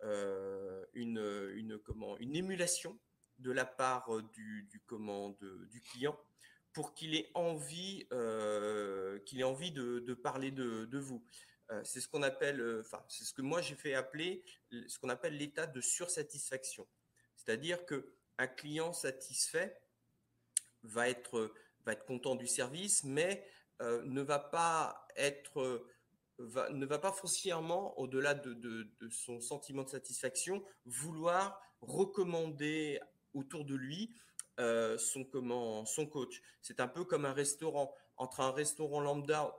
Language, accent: French, French